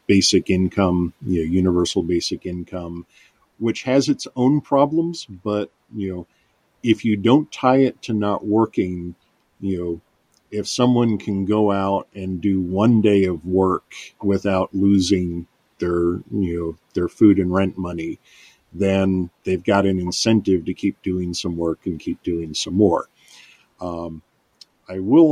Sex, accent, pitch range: male, American, 95-115 Hz